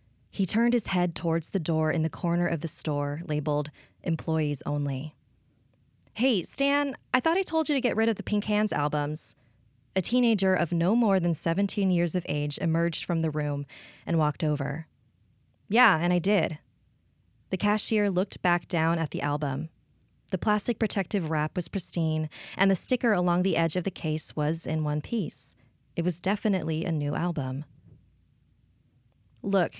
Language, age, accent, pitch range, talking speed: English, 20-39, American, 145-190 Hz, 175 wpm